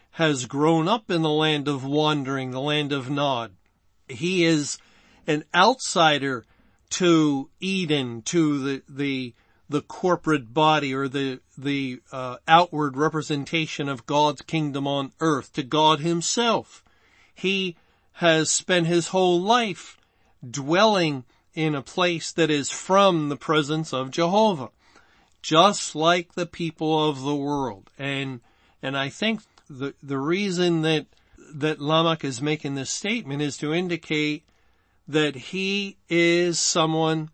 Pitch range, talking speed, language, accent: 135-165 Hz, 135 wpm, English, American